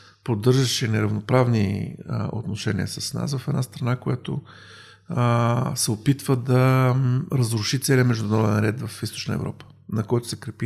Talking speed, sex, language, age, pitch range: 130 wpm, male, Bulgarian, 50-69, 105-135 Hz